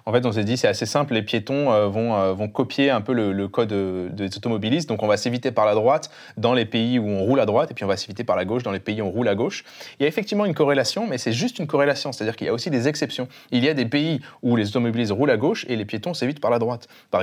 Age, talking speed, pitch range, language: 20-39, 315 wpm, 105-140 Hz, French